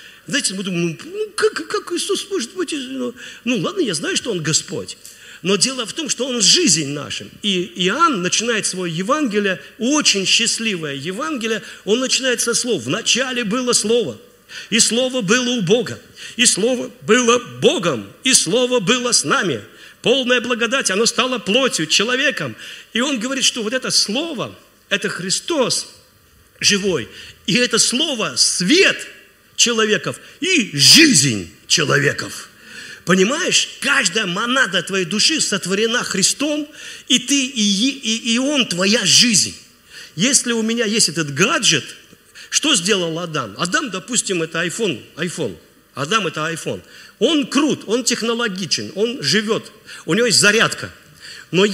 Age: 50-69